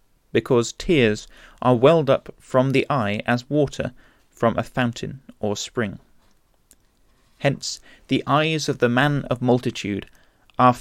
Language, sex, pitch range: English, male, 115-135 Hz